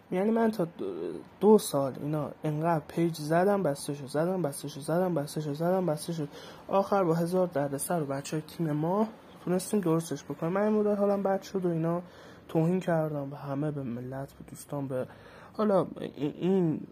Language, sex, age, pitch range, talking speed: Persian, male, 20-39, 145-185 Hz, 165 wpm